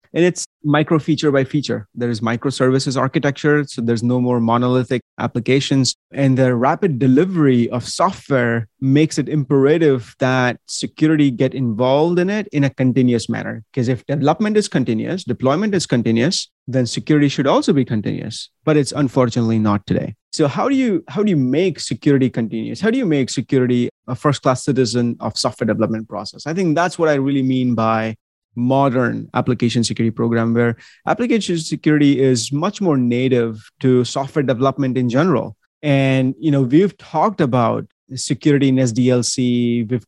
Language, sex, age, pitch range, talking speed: English, male, 30-49, 120-145 Hz, 165 wpm